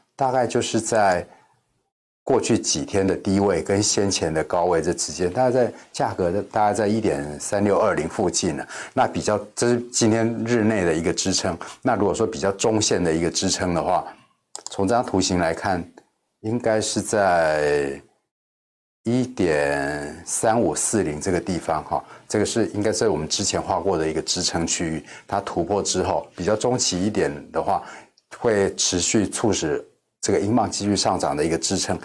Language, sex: Chinese, male